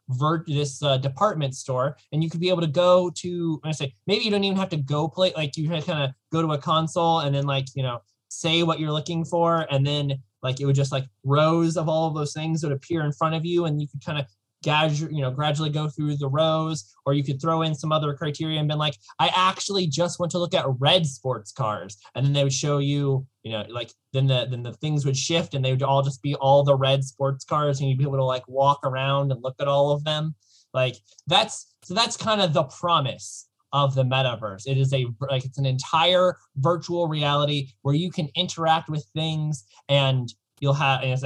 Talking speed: 240 wpm